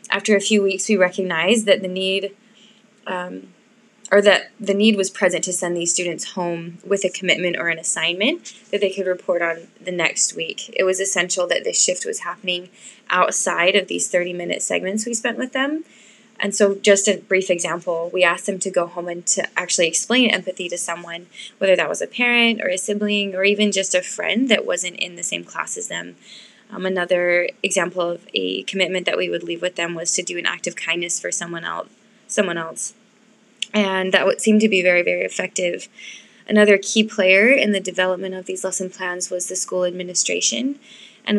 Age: 20-39